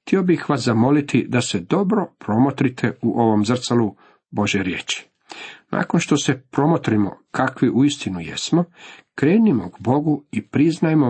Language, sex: Croatian, male